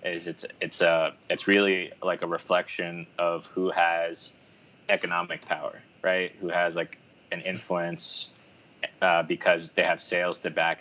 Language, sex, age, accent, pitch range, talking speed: English, male, 20-39, American, 90-100 Hz, 150 wpm